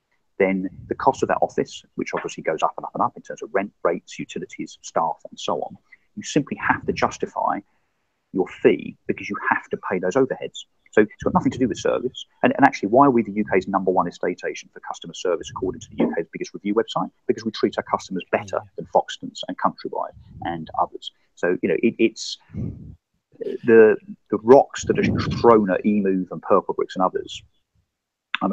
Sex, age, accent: male, 40-59, British